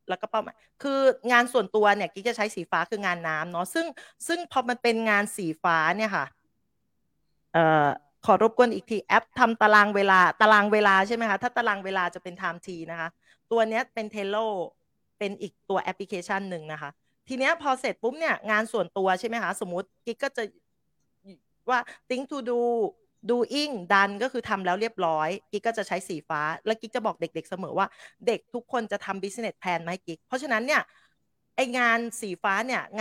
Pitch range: 185-240 Hz